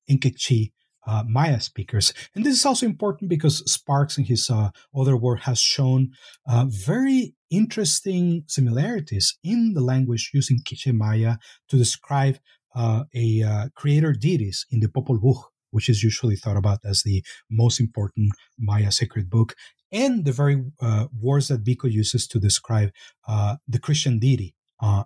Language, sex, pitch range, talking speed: English, male, 115-145 Hz, 160 wpm